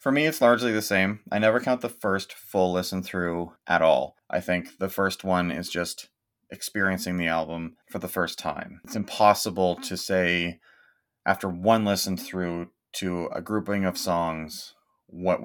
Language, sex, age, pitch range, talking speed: English, male, 30-49, 95-120 Hz, 165 wpm